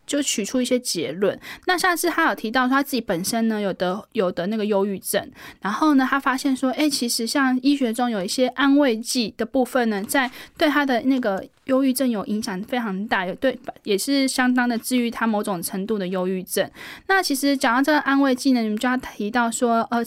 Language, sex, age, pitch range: Chinese, female, 10-29, 215-275 Hz